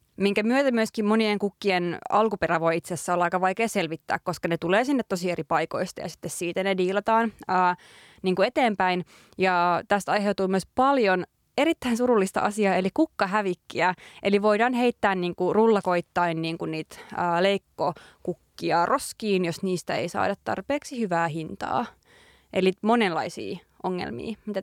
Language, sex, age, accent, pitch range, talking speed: Finnish, female, 20-39, native, 180-225 Hz, 150 wpm